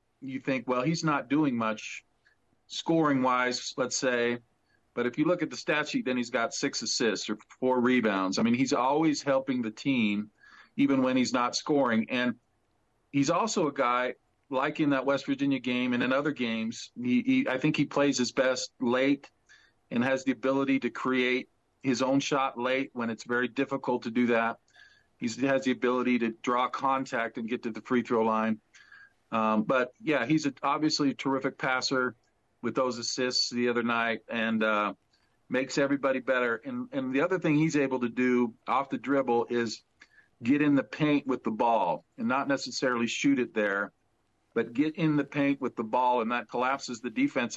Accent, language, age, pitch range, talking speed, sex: American, English, 50-69, 120-145 Hz, 190 wpm, male